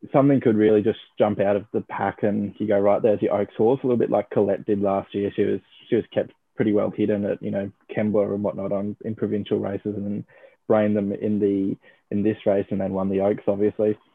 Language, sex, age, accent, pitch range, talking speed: English, male, 20-39, Australian, 100-110 Hz, 240 wpm